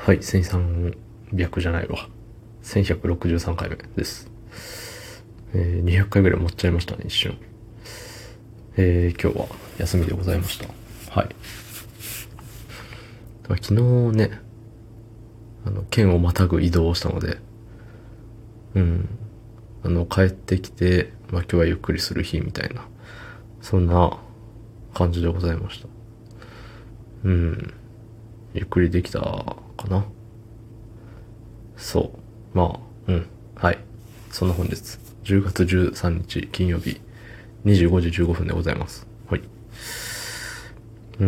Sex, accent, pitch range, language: male, native, 90-115 Hz, Japanese